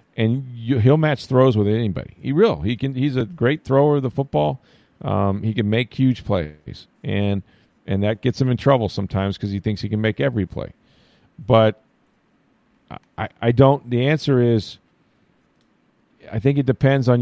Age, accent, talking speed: 40-59, American, 180 wpm